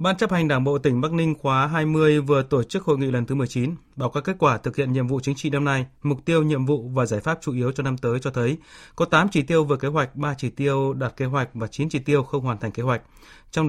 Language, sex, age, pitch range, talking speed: Vietnamese, male, 20-39, 125-155 Hz, 295 wpm